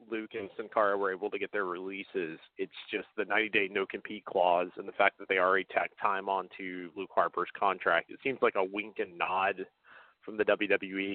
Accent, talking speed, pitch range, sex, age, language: American, 205 wpm, 100-130 Hz, male, 30-49, English